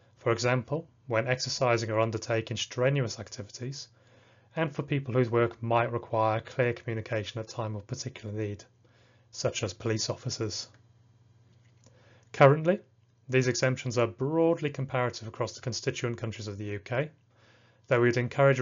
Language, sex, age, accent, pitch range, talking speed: English, male, 30-49, British, 110-130 Hz, 135 wpm